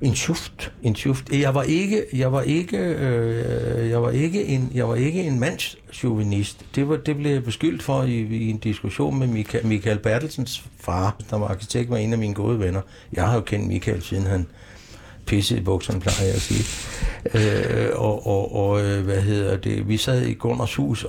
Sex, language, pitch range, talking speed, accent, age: male, Danish, 95-120 Hz, 185 wpm, native, 60-79